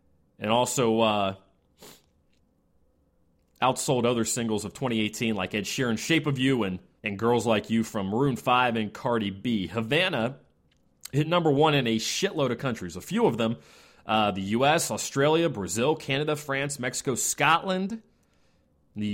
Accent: American